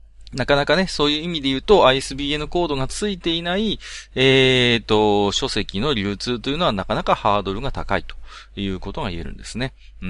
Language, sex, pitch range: Japanese, male, 100-155 Hz